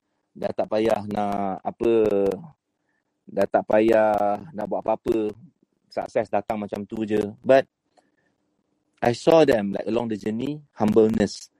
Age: 30-49